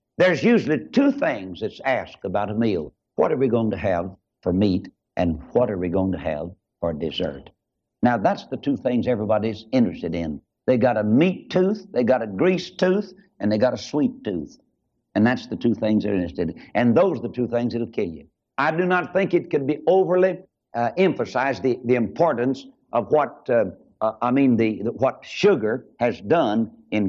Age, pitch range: 60-79, 110-180 Hz